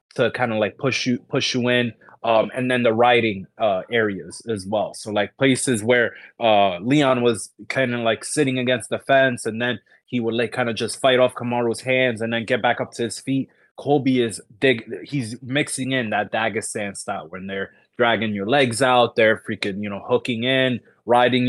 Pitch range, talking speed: 110-130 Hz, 205 wpm